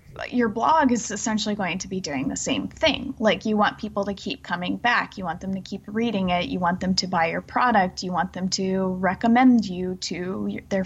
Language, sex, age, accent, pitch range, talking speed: English, female, 20-39, American, 190-235 Hz, 225 wpm